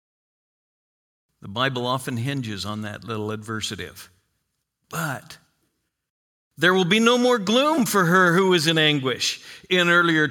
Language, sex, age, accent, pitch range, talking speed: English, male, 50-69, American, 145-210 Hz, 135 wpm